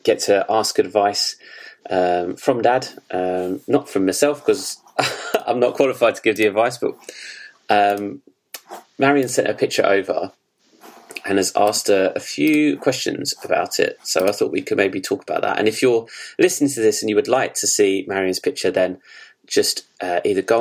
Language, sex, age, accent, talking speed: English, male, 20-39, British, 180 wpm